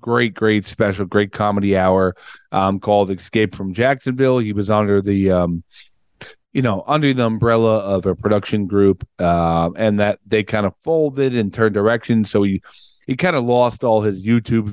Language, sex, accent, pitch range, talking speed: English, male, American, 100-125 Hz, 180 wpm